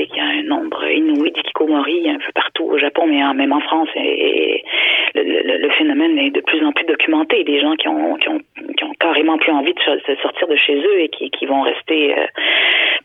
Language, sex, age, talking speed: French, female, 30-49, 235 wpm